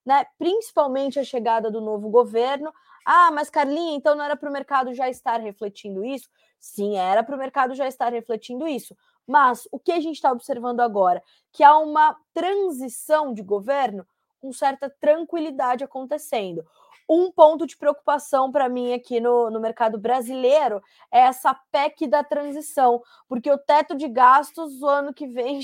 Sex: female